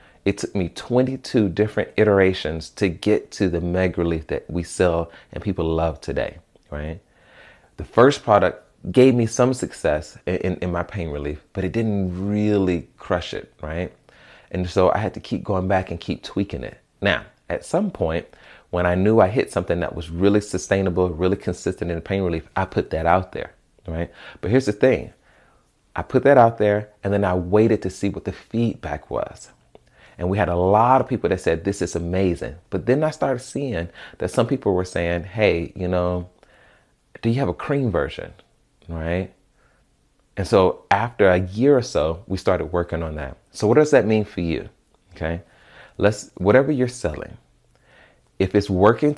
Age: 30-49